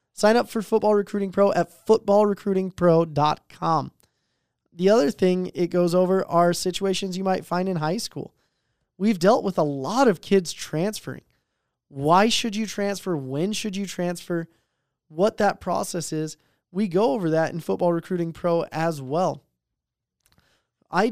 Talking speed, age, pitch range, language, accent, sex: 150 wpm, 20-39, 160-195 Hz, English, American, male